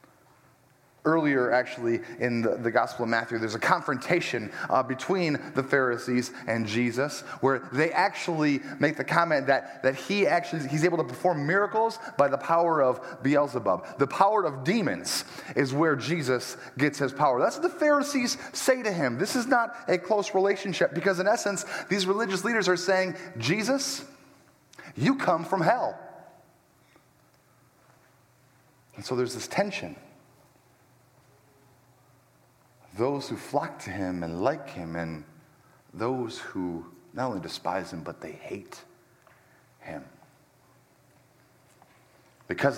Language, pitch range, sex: English, 120-165 Hz, male